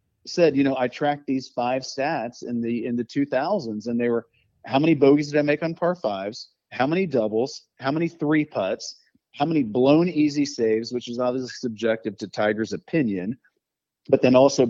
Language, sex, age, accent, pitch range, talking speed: English, male, 40-59, American, 125-165 Hz, 190 wpm